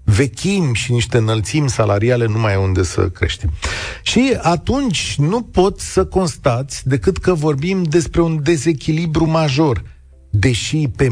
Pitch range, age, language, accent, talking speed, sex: 110-155 Hz, 40-59, Romanian, native, 140 wpm, male